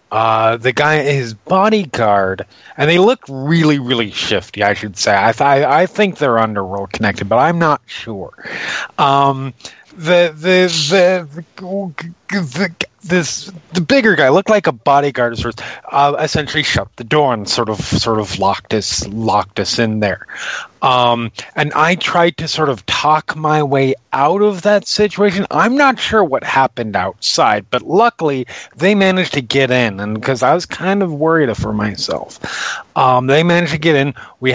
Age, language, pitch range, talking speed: 30-49, English, 115-160 Hz, 170 wpm